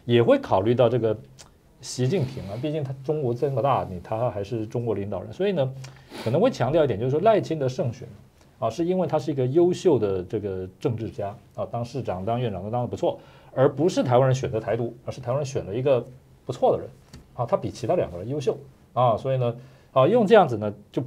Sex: male